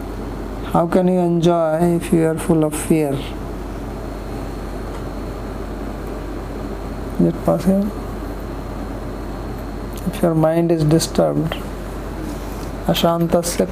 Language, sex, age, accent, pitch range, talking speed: English, male, 60-79, Indian, 105-170 Hz, 85 wpm